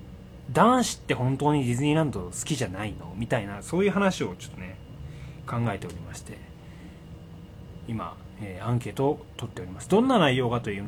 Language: Japanese